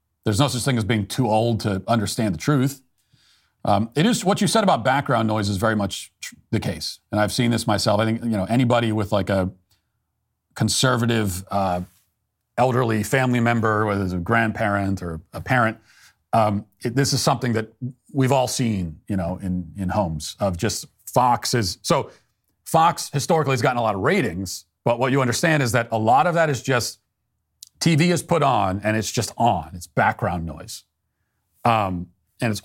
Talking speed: 190 wpm